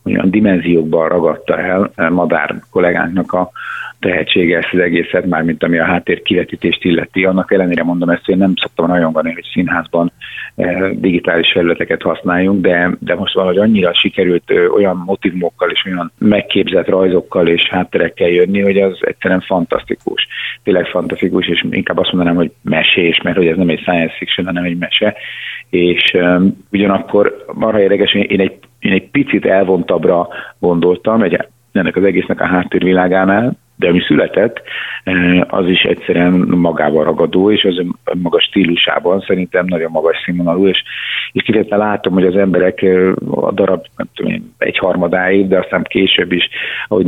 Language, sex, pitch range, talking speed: Hungarian, male, 85-95 Hz, 160 wpm